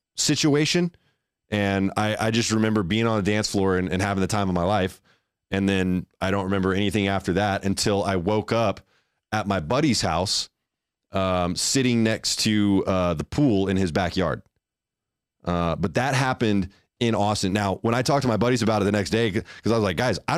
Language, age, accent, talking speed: English, 20-39, American, 205 wpm